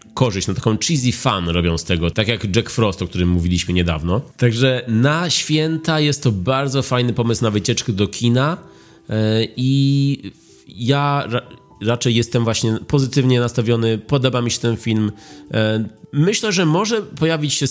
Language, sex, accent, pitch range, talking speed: Polish, male, native, 90-125 Hz, 160 wpm